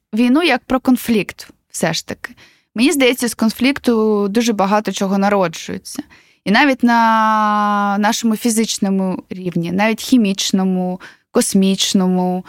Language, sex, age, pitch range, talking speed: Ukrainian, female, 20-39, 195-250 Hz, 115 wpm